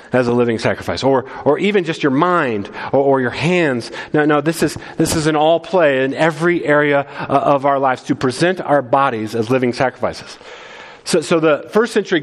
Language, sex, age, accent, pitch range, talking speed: English, male, 30-49, American, 140-185 Hz, 200 wpm